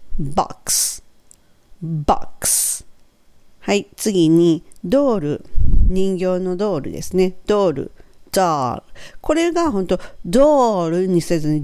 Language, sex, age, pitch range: Japanese, female, 50-69, 140-200 Hz